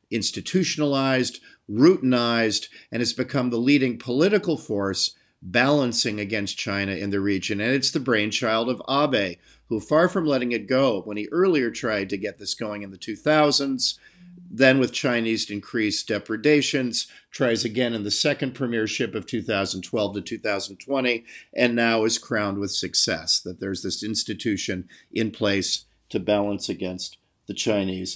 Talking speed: 150 wpm